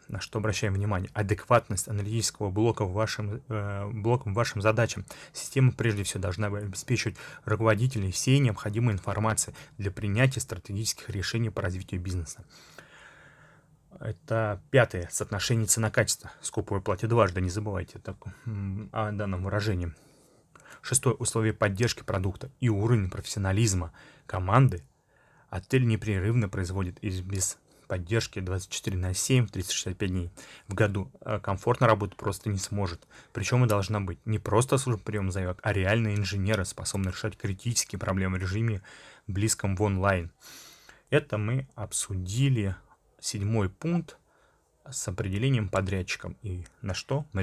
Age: 20-39